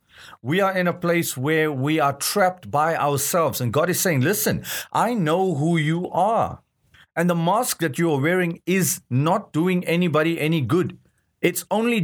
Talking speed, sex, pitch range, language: 180 wpm, male, 125-180 Hz, English